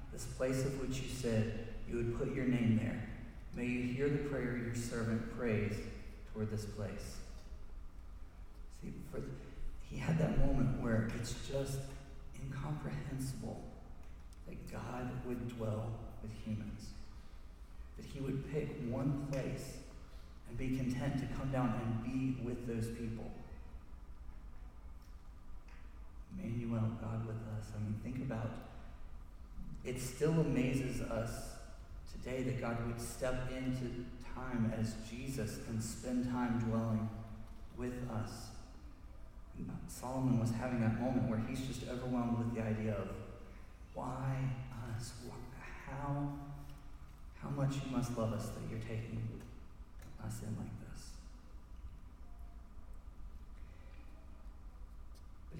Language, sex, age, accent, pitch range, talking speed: English, male, 40-59, American, 85-125 Hz, 125 wpm